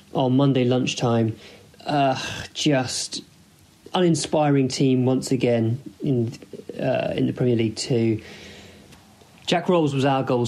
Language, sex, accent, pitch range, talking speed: English, male, British, 125-155 Hz, 120 wpm